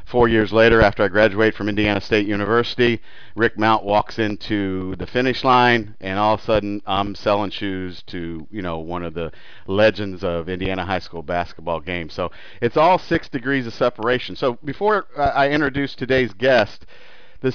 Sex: male